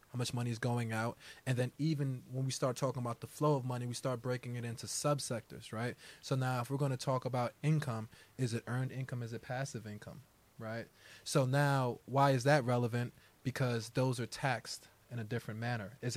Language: English